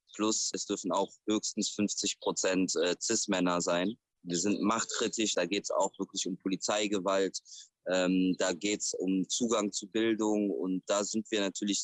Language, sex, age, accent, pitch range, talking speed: German, male, 20-39, German, 95-110 Hz, 160 wpm